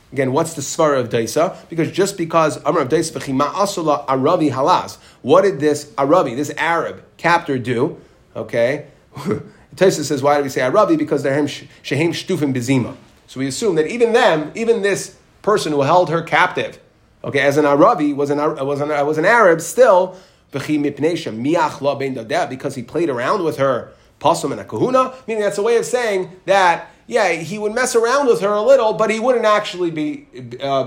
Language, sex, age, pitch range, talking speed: English, male, 30-49, 140-195 Hz, 165 wpm